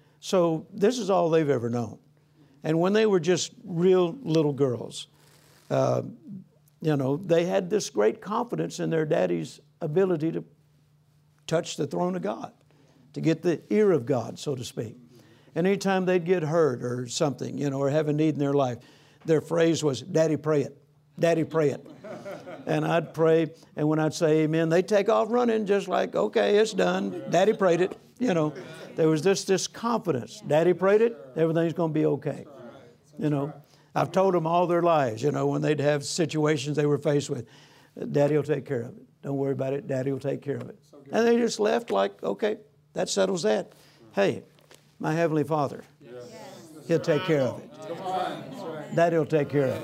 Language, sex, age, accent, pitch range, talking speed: English, male, 60-79, American, 145-185 Hz, 190 wpm